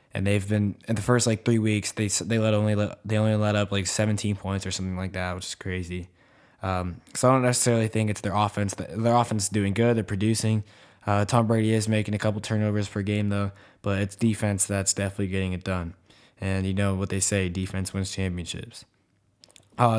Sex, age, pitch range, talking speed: male, 20-39, 100-115 Hz, 220 wpm